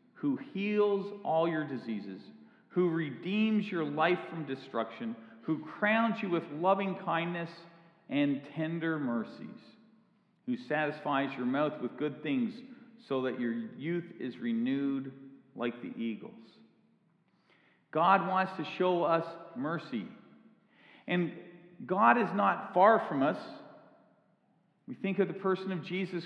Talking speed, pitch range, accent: 130 wpm, 145-195 Hz, American